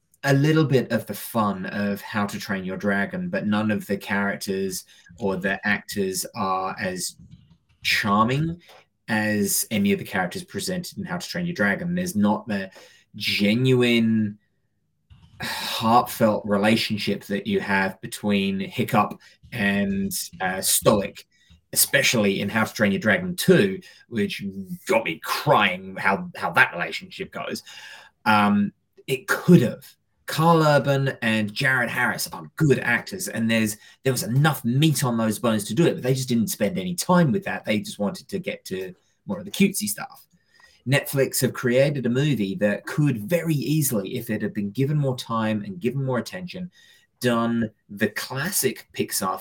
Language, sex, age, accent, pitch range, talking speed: English, male, 20-39, British, 105-175 Hz, 165 wpm